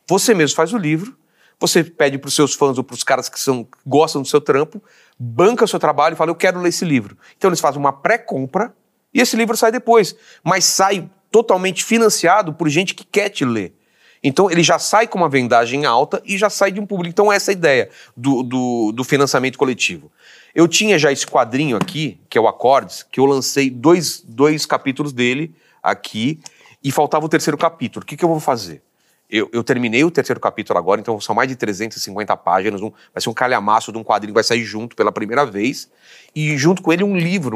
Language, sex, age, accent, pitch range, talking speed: Portuguese, male, 30-49, Brazilian, 130-185 Hz, 220 wpm